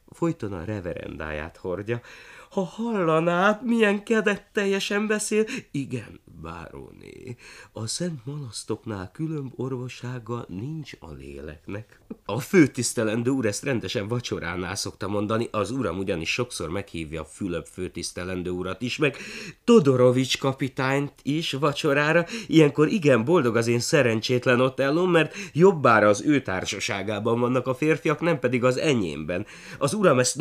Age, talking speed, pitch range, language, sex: 30-49, 125 wpm, 95-140 Hz, Hungarian, male